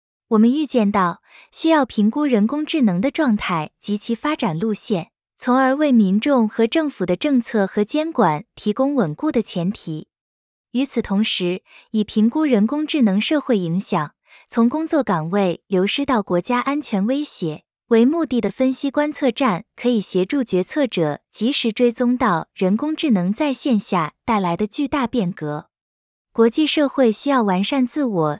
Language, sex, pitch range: Vietnamese, female, 195-270 Hz